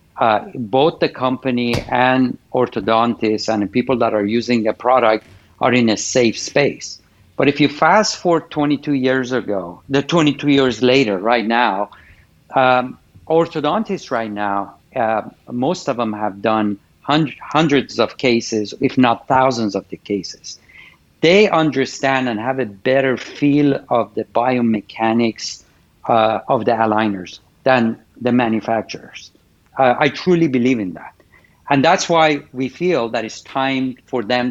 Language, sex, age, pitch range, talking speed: English, male, 50-69, 110-140 Hz, 150 wpm